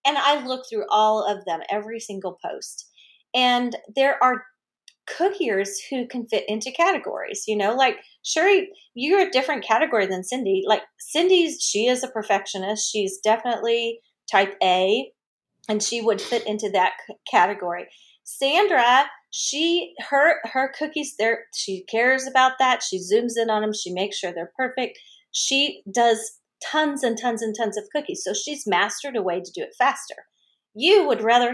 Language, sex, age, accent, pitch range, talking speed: English, female, 30-49, American, 210-280 Hz, 165 wpm